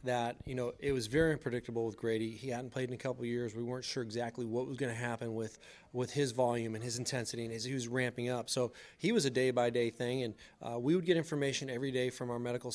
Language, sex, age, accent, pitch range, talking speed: English, male, 30-49, American, 120-135 Hz, 265 wpm